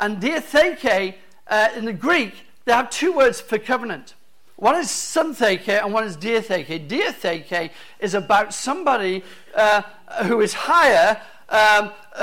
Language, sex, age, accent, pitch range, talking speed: English, male, 50-69, British, 185-240 Hz, 135 wpm